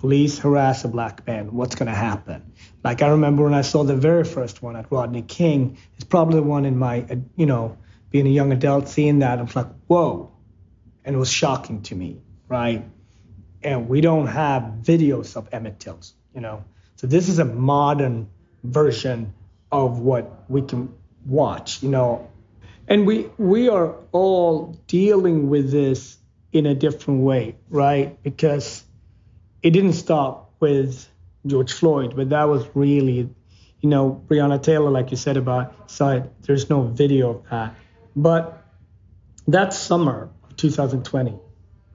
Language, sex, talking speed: English, male, 160 wpm